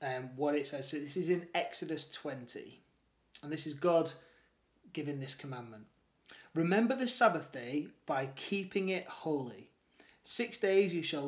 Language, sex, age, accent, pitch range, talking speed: English, male, 30-49, British, 145-185 Hz, 155 wpm